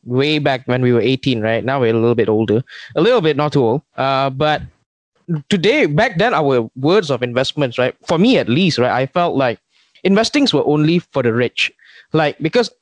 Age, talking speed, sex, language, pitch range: 20-39, 210 wpm, male, English, 125-170 Hz